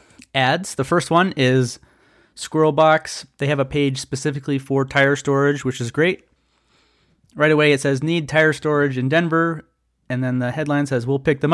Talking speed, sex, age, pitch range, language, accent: 180 wpm, male, 30-49, 125-155 Hz, English, American